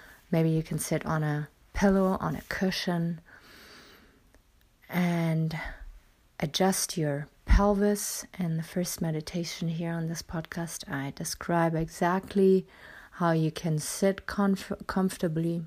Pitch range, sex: 160-185 Hz, female